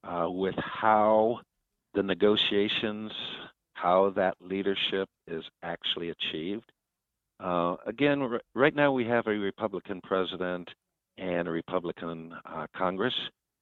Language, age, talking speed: English, 60-79, 110 wpm